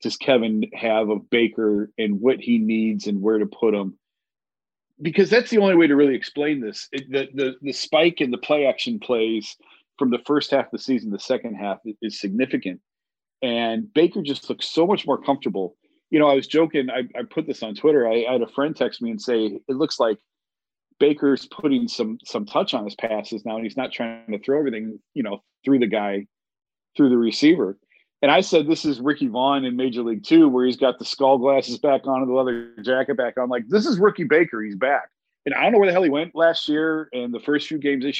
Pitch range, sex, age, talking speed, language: 110-145 Hz, male, 40-59, 230 wpm, English